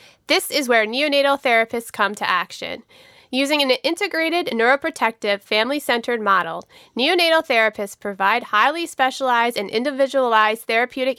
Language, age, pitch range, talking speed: English, 30-49, 215-275 Hz, 120 wpm